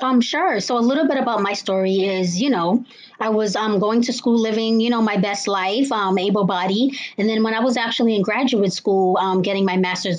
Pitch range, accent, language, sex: 185-215 Hz, American, English, female